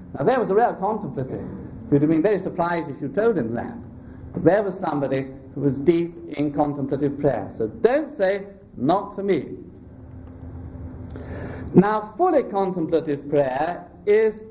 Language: English